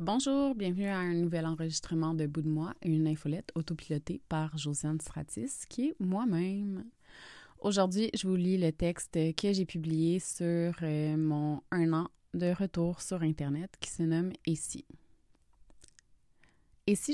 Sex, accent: female, Canadian